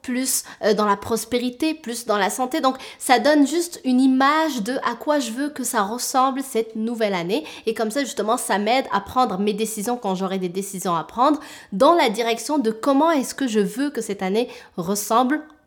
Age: 20-39